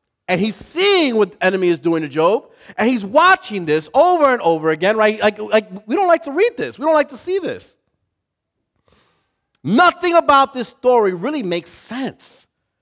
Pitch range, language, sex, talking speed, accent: 155-235 Hz, English, male, 185 wpm, American